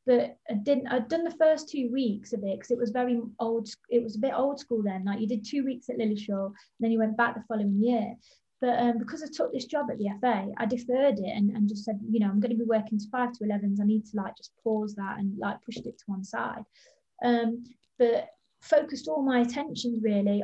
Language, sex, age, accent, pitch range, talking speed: English, female, 20-39, British, 210-245 Hz, 255 wpm